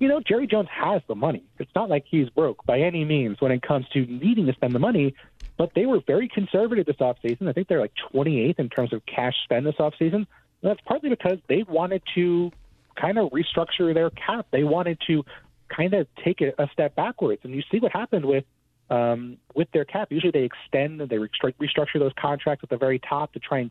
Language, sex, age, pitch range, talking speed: English, male, 30-49, 130-170 Hz, 225 wpm